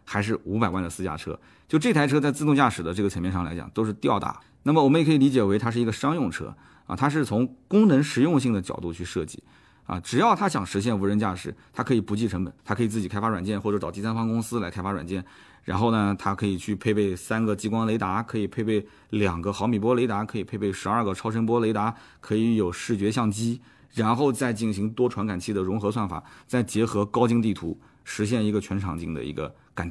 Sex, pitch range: male, 100-125 Hz